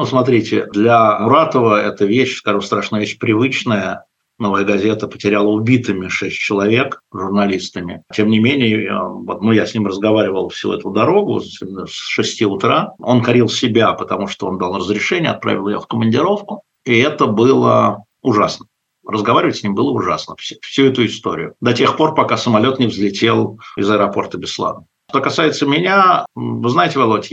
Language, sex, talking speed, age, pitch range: Russian, male, 155 wpm, 50-69, 105-130 Hz